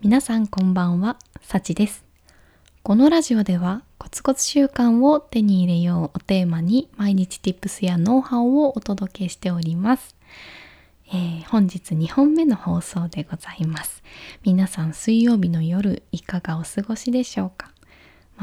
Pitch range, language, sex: 180-235 Hz, Japanese, female